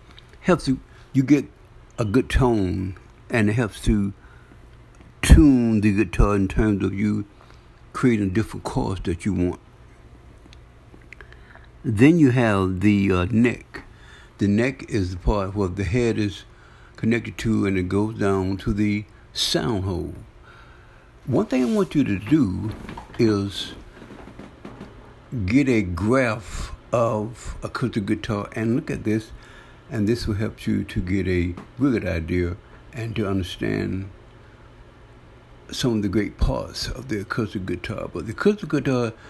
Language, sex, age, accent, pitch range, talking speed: English, male, 60-79, American, 95-120 Hz, 145 wpm